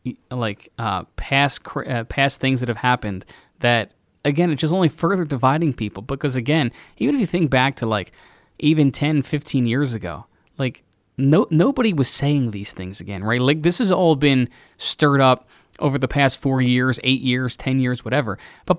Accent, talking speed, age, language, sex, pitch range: American, 185 wpm, 20-39, English, male, 120-150 Hz